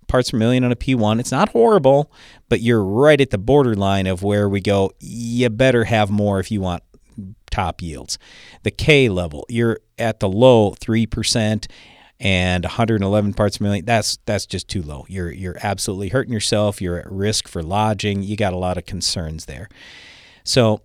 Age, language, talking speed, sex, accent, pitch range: 40-59, English, 180 wpm, male, American, 95-125 Hz